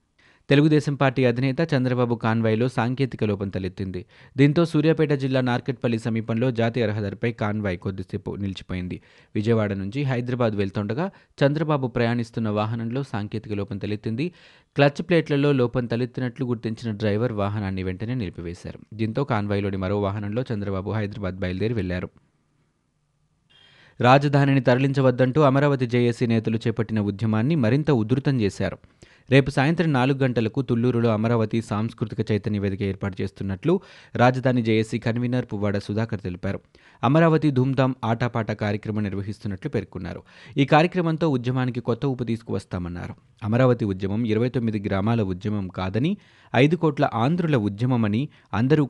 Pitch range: 105-135 Hz